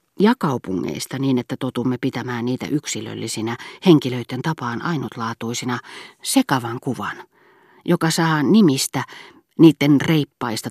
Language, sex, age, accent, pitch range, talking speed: Finnish, female, 40-59, native, 115-155 Hz, 100 wpm